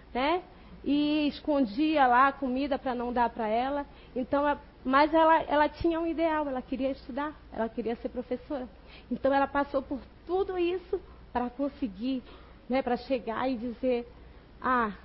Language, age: Portuguese, 30-49